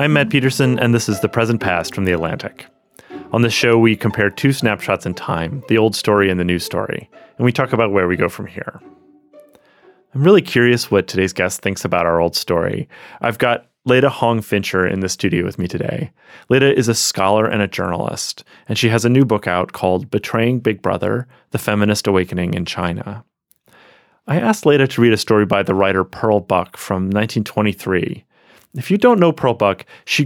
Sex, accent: male, American